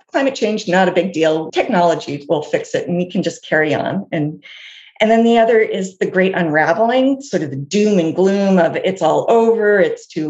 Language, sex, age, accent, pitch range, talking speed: English, female, 40-59, American, 175-245 Hz, 215 wpm